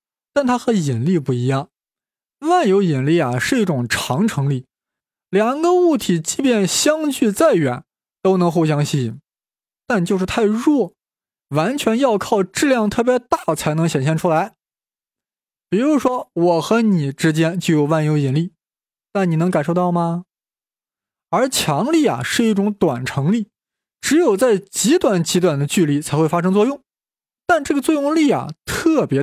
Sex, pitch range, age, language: male, 150-225 Hz, 20-39, Chinese